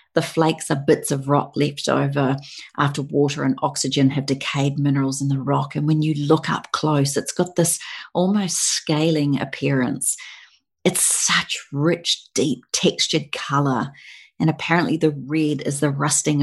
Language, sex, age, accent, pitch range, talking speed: English, female, 40-59, Australian, 140-155 Hz, 155 wpm